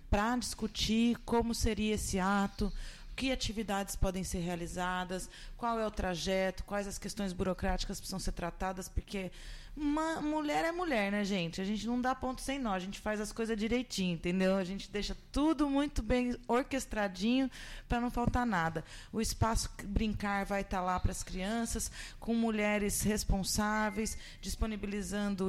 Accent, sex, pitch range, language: Brazilian, female, 195-245 Hz, Portuguese